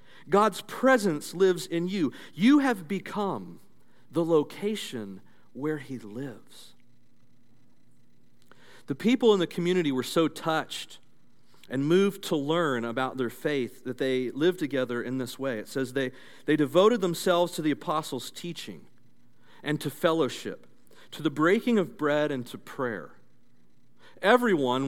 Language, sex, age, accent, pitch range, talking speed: English, male, 40-59, American, 135-185 Hz, 135 wpm